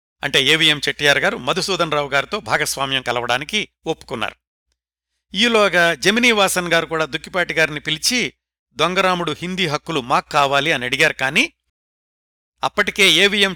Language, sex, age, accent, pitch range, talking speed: Telugu, male, 60-79, native, 130-180 Hz, 120 wpm